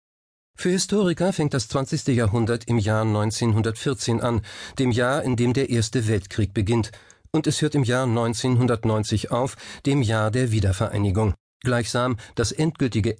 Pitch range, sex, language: 105-135 Hz, male, German